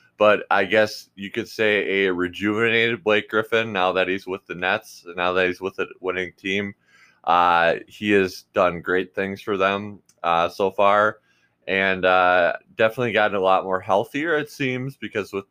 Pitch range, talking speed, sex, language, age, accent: 90-105 Hz, 180 wpm, male, English, 20-39, American